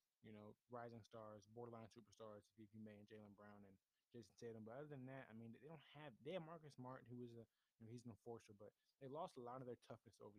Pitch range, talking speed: 105-120 Hz, 260 wpm